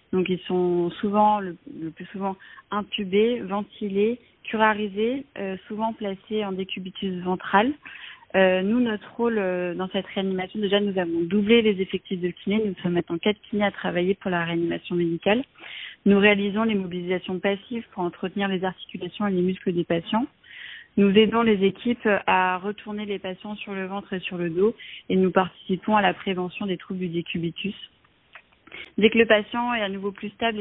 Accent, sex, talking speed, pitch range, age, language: French, female, 180 wpm, 180-210 Hz, 30-49, French